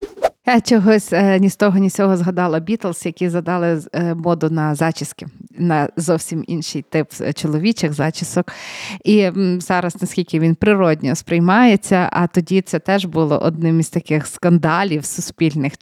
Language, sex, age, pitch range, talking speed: Ukrainian, female, 20-39, 170-205 Hz, 140 wpm